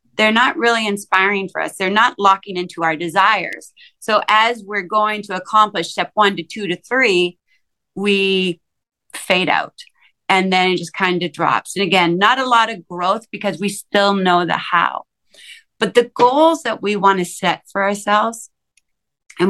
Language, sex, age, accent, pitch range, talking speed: English, female, 30-49, American, 180-230 Hz, 180 wpm